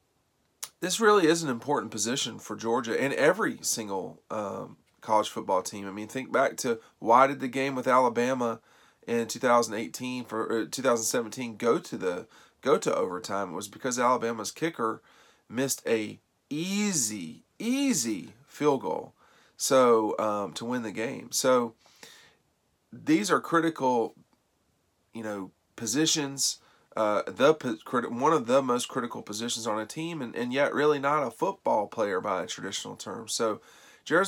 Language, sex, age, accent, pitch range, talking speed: English, male, 40-59, American, 110-135 Hz, 150 wpm